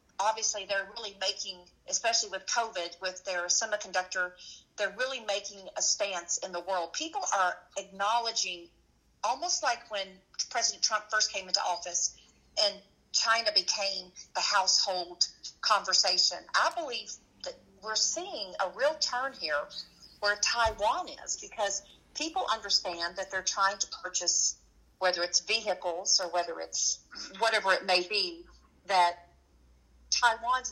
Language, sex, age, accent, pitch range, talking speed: English, female, 50-69, American, 180-220 Hz, 135 wpm